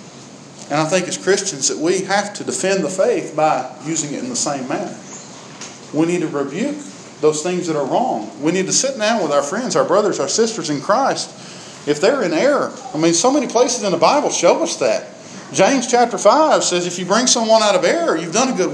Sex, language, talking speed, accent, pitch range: male, English, 230 wpm, American, 160-240 Hz